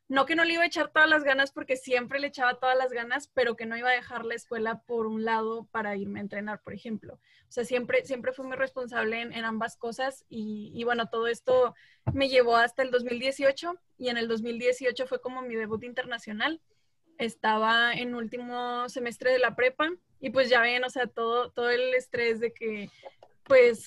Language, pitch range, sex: Spanish, 230-260 Hz, female